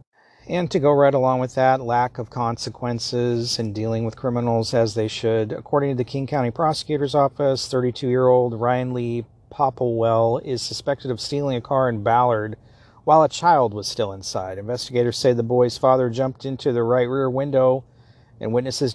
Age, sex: 40-59, male